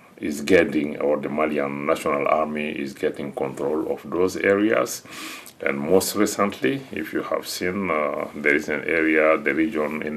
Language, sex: English, male